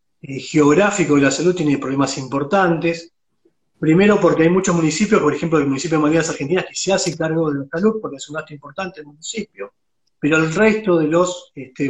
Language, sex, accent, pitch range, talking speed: Spanish, male, Argentinian, 145-180 Hz, 200 wpm